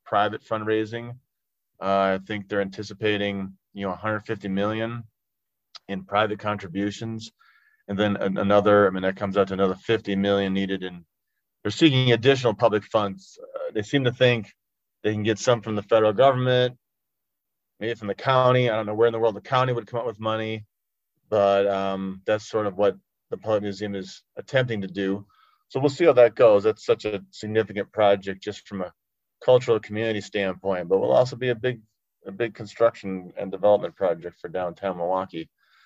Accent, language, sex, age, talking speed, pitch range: American, English, male, 30-49, 180 wpm, 100-115 Hz